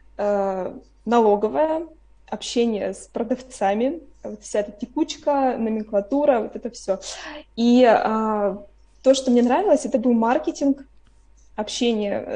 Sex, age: female, 20-39